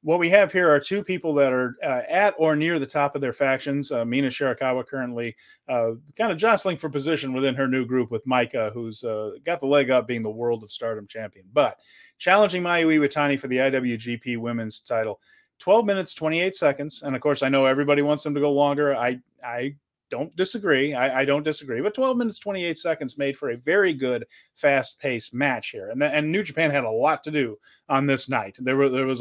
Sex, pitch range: male, 125-155 Hz